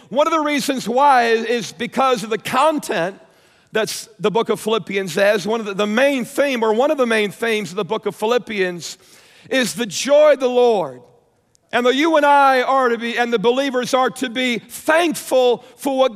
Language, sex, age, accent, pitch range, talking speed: English, male, 50-69, American, 225-280 Hz, 210 wpm